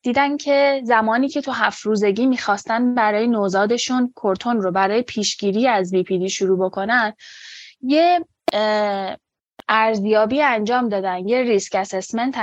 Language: Persian